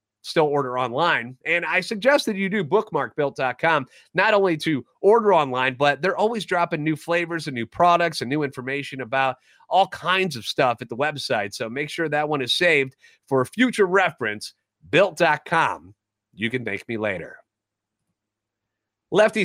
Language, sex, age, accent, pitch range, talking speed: English, male, 30-49, American, 135-175 Hz, 165 wpm